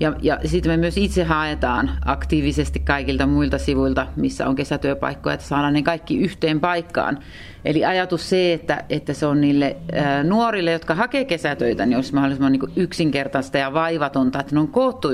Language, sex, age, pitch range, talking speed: Finnish, female, 30-49, 135-170 Hz, 170 wpm